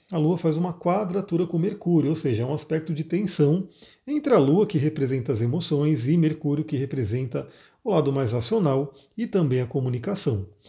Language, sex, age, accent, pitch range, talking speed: Portuguese, male, 40-59, Brazilian, 135-170 Hz, 185 wpm